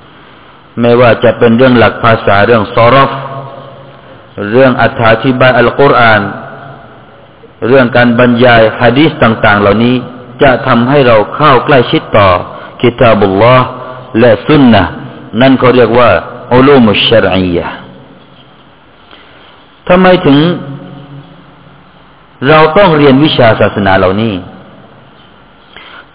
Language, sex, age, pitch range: Thai, male, 50-69, 115-145 Hz